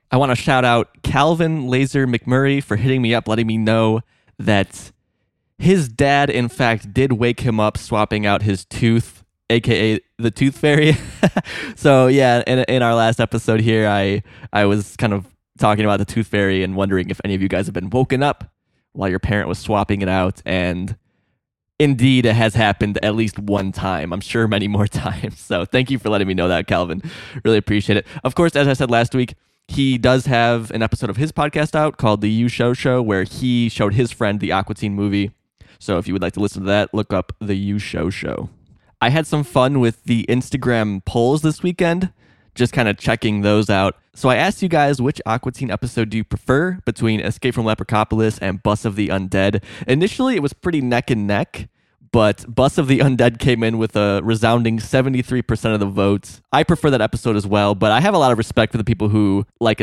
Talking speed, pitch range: 215 wpm, 100-125 Hz